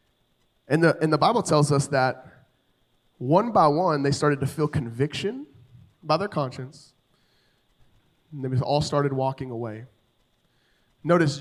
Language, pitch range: English, 130-165 Hz